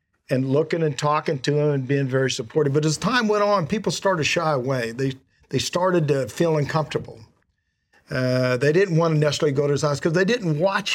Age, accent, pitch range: 50-69, American, 135-180 Hz